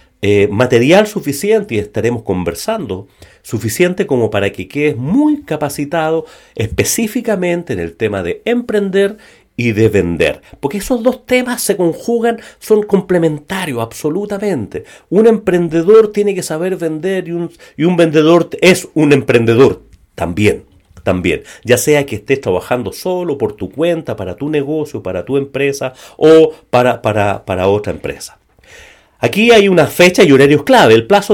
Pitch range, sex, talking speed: 115-180 Hz, male, 145 wpm